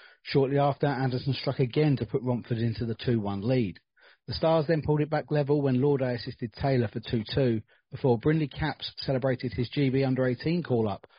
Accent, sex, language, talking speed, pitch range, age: British, male, English, 175 wpm, 120-145 Hz, 40-59